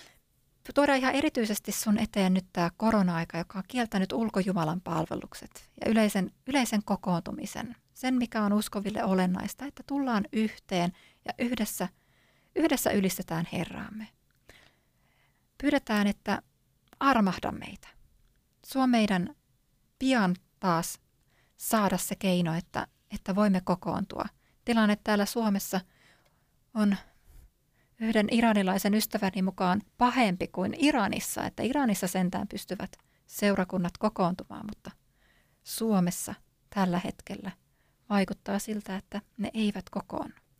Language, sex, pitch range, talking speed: Finnish, female, 185-220 Hz, 105 wpm